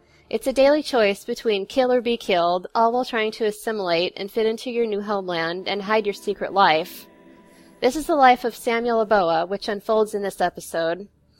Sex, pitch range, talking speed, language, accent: female, 185-230 Hz, 195 wpm, English, American